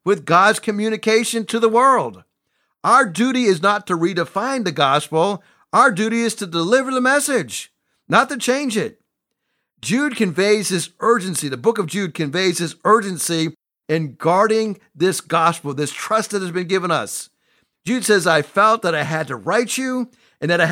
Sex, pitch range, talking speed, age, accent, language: male, 170-225 Hz, 175 wpm, 50-69, American, English